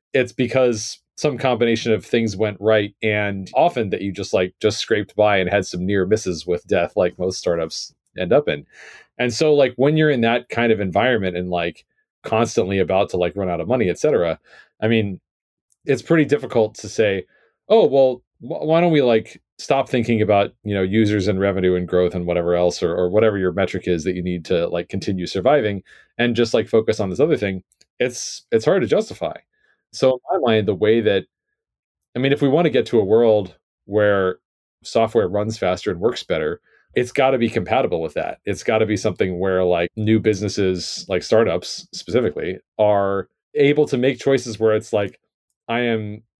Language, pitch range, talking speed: English, 95-125 Hz, 205 wpm